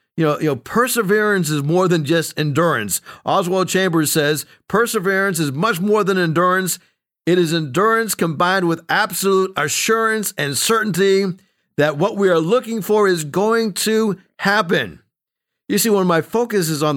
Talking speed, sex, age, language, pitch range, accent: 160 wpm, male, 50-69, English, 155-205 Hz, American